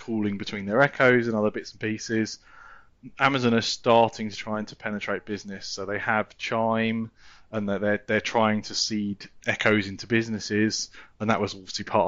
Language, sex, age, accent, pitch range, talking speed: English, male, 20-39, British, 100-115 Hz, 180 wpm